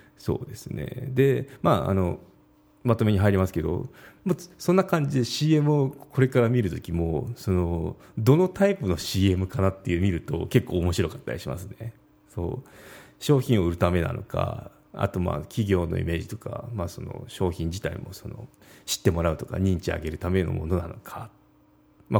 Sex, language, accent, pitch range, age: male, Japanese, native, 90-125 Hz, 30-49